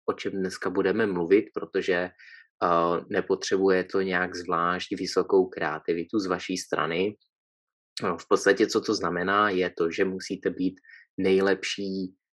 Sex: male